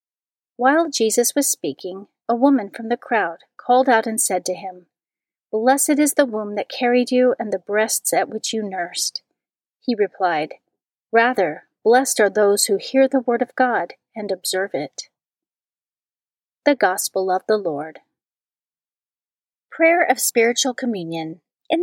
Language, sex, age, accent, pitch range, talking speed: English, female, 40-59, American, 190-250 Hz, 150 wpm